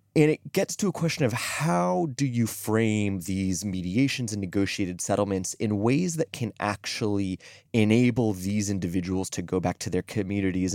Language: English